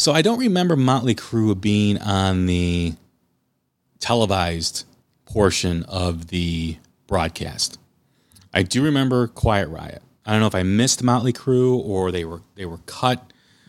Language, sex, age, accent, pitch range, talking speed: English, male, 30-49, American, 90-120 Hz, 145 wpm